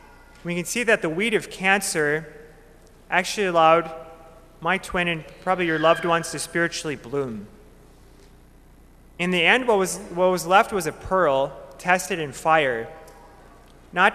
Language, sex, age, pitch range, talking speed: English, male, 30-49, 160-195 Hz, 150 wpm